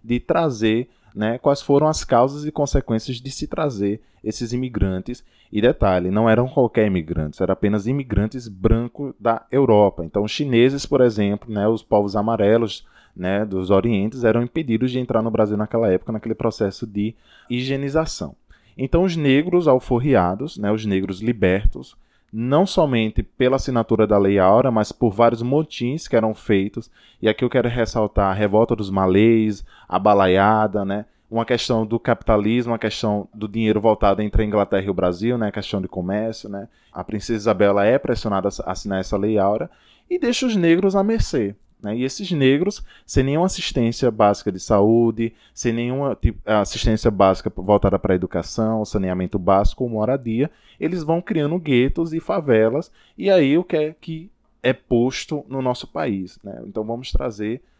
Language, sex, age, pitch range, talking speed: Portuguese, male, 20-39, 105-135 Hz, 170 wpm